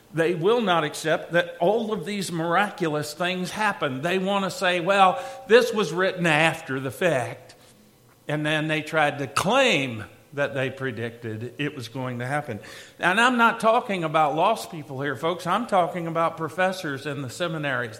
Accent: American